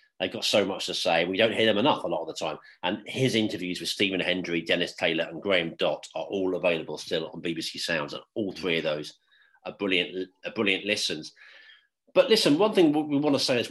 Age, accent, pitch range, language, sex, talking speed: 40-59, British, 100-135 Hz, English, male, 230 wpm